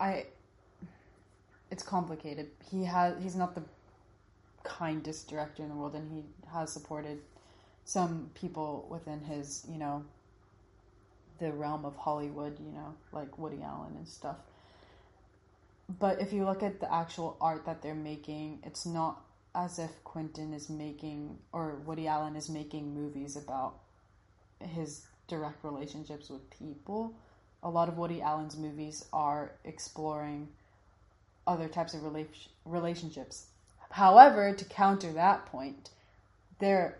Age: 20-39